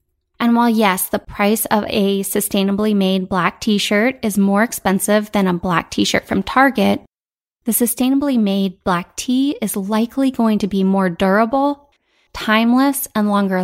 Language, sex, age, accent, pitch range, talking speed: English, female, 20-39, American, 190-220 Hz, 155 wpm